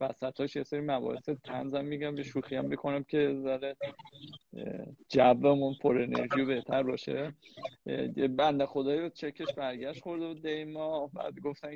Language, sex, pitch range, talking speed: Persian, male, 130-160 Hz, 150 wpm